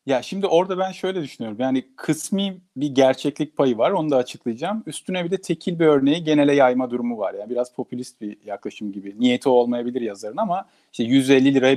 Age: 40-59